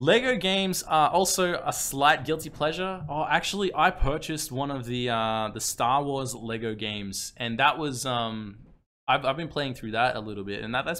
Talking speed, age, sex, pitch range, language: 200 wpm, 20-39, male, 125-170 Hz, English